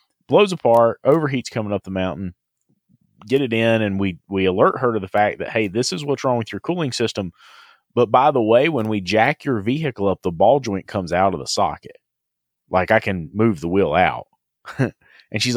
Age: 30-49